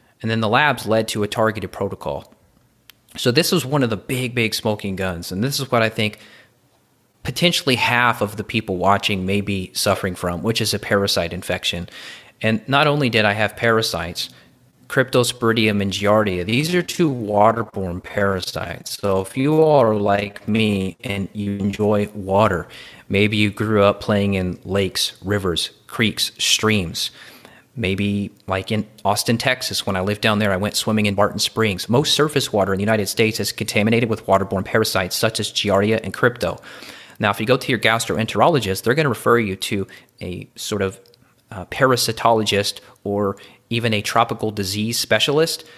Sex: male